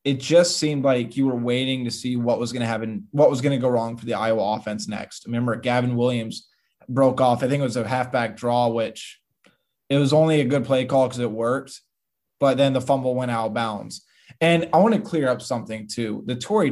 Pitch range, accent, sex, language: 115-140 Hz, American, male, English